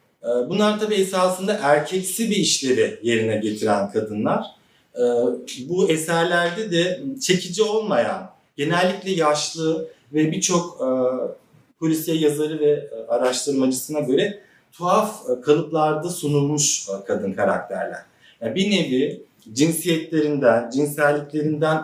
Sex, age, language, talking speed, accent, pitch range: male, 50-69, Turkish, 90 wpm, native, 125-180 Hz